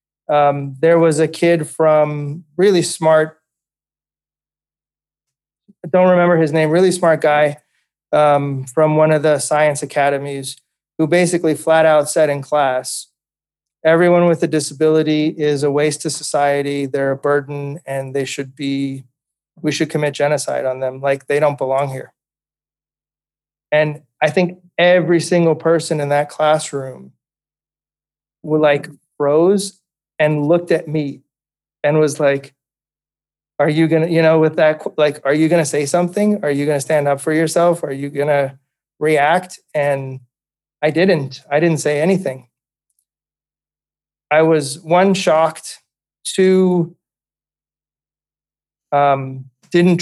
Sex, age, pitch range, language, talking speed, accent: male, 30-49, 140-160 Hz, English, 140 wpm, American